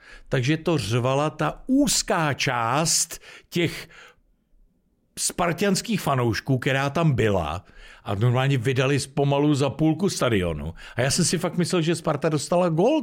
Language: Czech